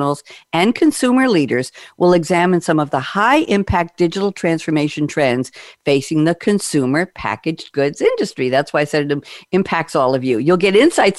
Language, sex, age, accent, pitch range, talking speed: English, female, 50-69, American, 150-200 Hz, 160 wpm